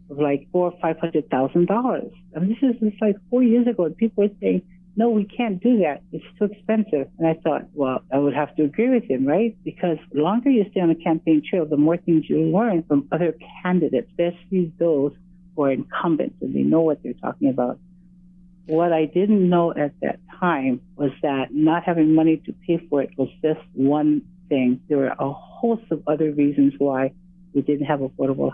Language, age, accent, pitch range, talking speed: English, 60-79, American, 145-185 Hz, 200 wpm